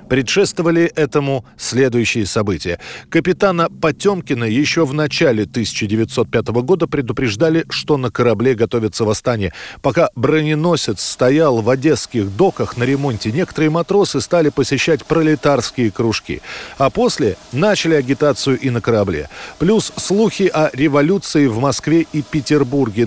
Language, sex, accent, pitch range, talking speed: Russian, male, native, 125-165 Hz, 120 wpm